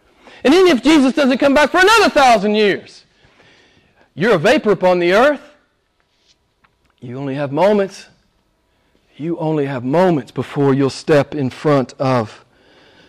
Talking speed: 140 wpm